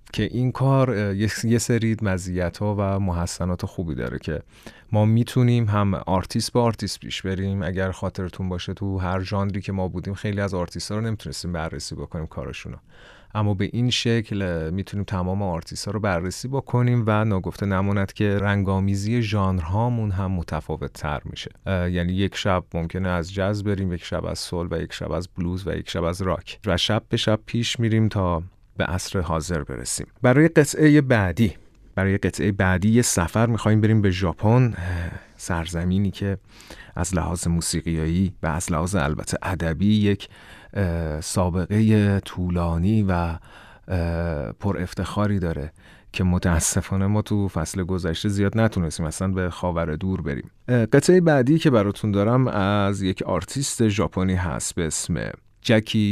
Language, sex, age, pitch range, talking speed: Persian, male, 30-49, 90-105 Hz, 155 wpm